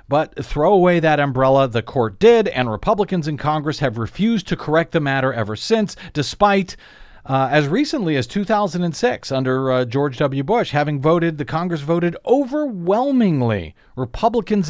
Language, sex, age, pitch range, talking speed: English, male, 40-59, 120-170 Hz, 155 wpm